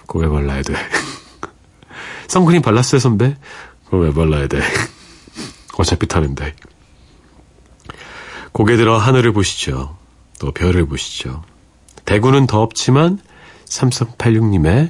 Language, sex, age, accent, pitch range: Korean, male, 40-59, native, 75-120 Hz